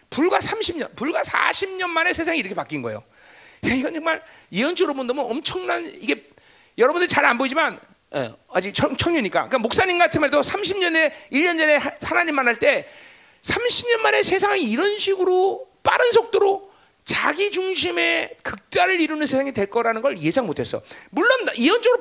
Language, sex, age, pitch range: Korean, male, 40-59, 265-435 Hz